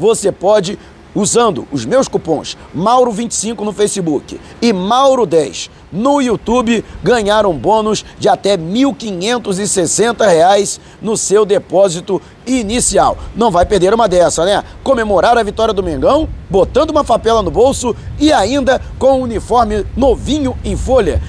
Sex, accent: male, Brazilian